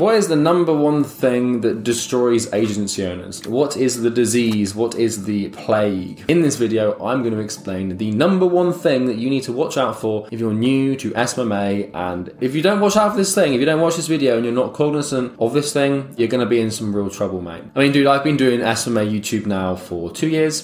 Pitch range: 95-125 Hz